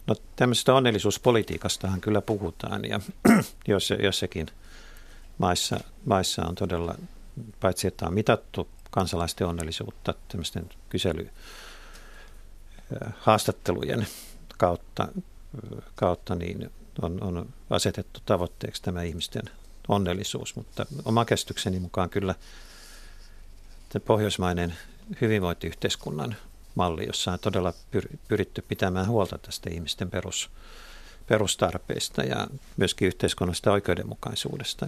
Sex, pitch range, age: male, 85-105 Hz, 50-69